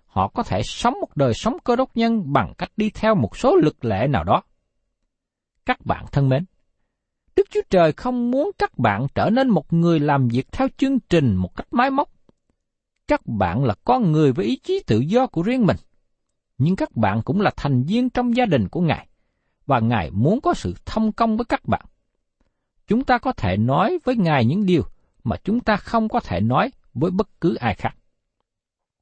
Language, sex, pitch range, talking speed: Vietnamese, male, 150-245 Hz, 205 wpm